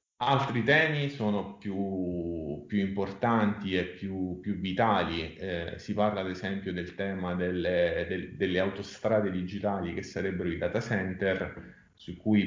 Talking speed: 140 wpm